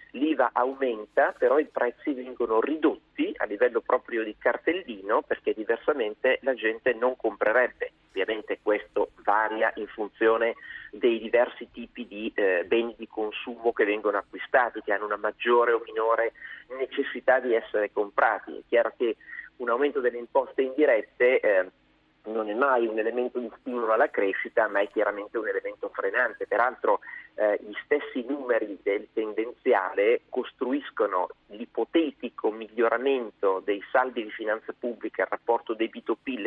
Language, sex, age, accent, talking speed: Italian, male, 40-59, native, 145 wpm